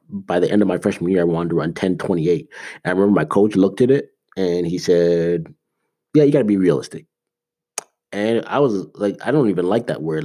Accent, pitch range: American, 90-125 Hz